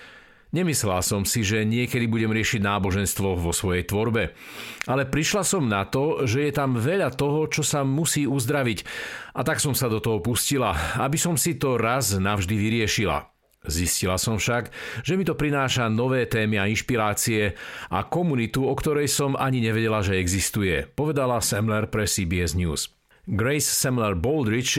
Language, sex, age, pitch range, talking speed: Slovak, male, 50-69, 110-145 Hz, 160 wpm